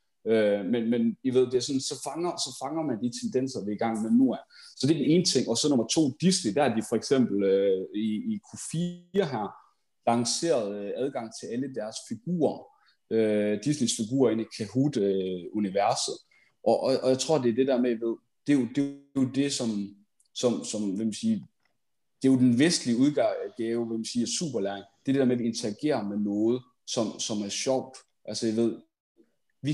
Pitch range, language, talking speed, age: 110-135 Hz, Danish, 210 wpm, 30-49